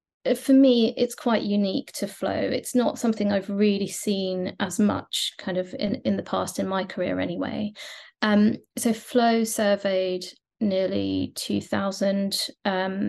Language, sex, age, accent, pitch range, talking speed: English, female, 20-39, British, 185-215 Hz, 140 wpm